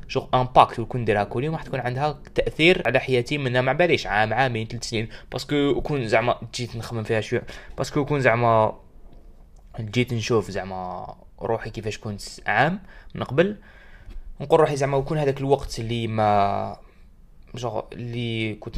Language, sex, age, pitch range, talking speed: Arabic, male, 20-39, 110-130 Hz, 170 wpm